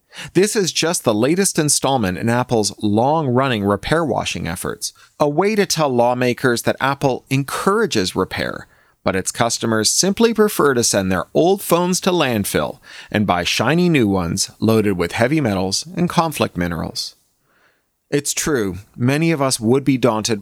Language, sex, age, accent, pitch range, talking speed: English, male, 30-49, American, 105-160 Hz, 155 wpm